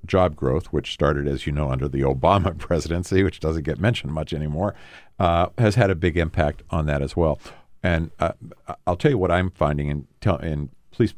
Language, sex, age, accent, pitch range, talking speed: English, male, 50-69, American, 75-90 Hz, 210 wpm